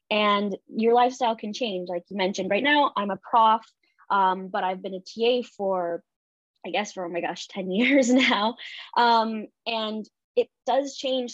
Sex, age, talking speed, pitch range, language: female, 20-39, 180 wpm, 185-230 Hz, English